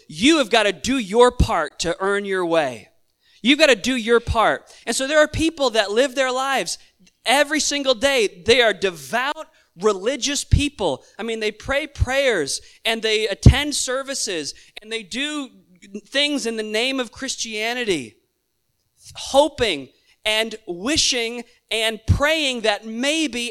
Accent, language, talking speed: American, English, 150 wpm